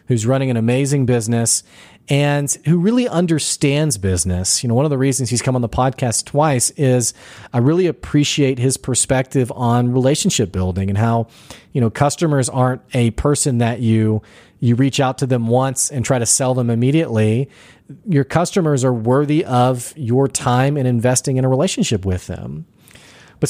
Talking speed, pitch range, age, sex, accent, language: 175 wpm, 115-150 Hz, 40-59, male, American, English